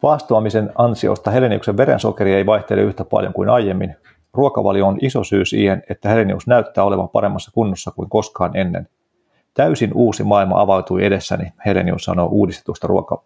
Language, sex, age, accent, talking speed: Finnish, male, 40-59, native, 150 wpm